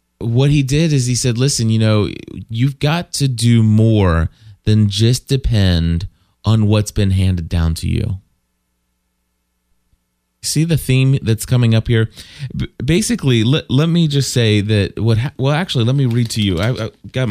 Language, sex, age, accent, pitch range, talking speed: English, male, 30-49, American, 95-125 Hz, 165 wpm